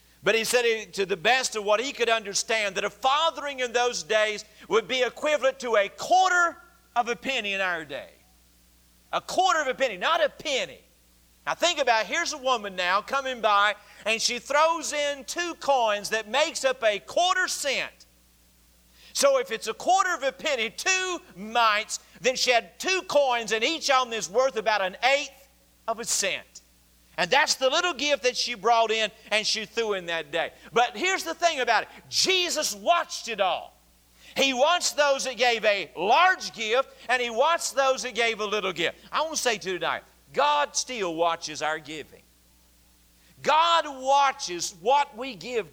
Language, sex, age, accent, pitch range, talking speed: English, male, 50-69, American, 200-275 Hz, 190 wpm